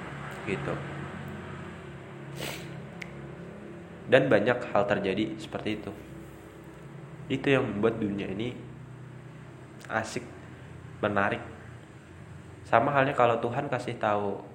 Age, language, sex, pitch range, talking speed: 20-39, Indonesian, male, 100-125 Hz, 85 wpm